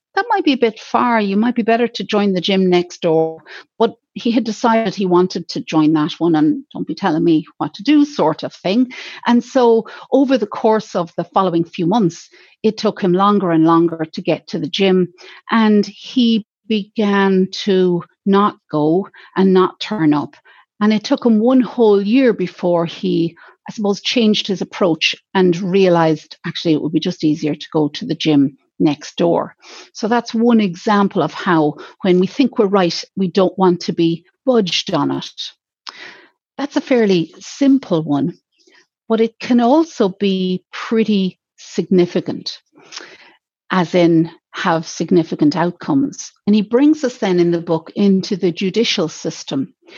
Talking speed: 175 wpm